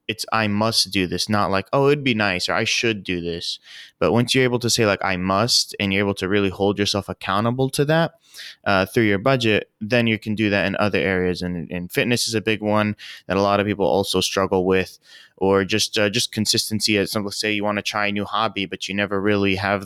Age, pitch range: 20-39, 95-105 Hz